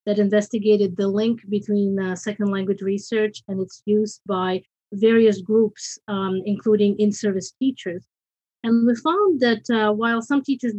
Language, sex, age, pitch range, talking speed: English, female, 30-49, 205-245 Hz, 150 wpm